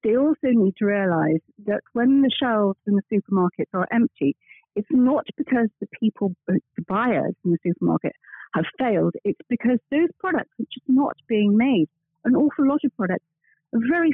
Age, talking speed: 50-69, 180 wpm